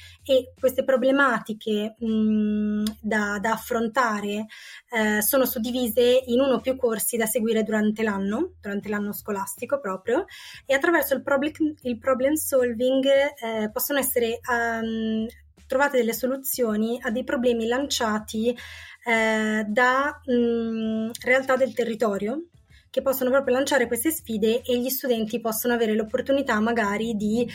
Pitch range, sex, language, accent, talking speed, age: 220-250 Hz, female, Italian, native, 125 wpm, 20-39